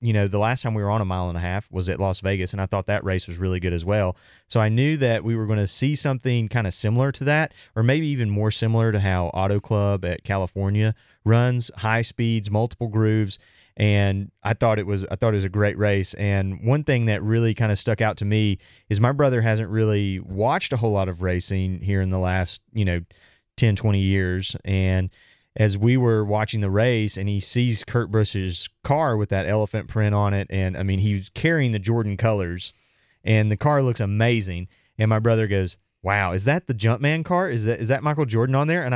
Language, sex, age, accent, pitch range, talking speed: English, male, 30-49, American, 100-120 Hz, 235 wpm